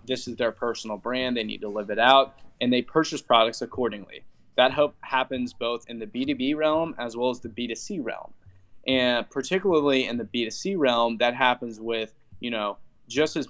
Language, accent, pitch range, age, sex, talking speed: English, American, 115-135 Hz, 20-39, male, 185 wpm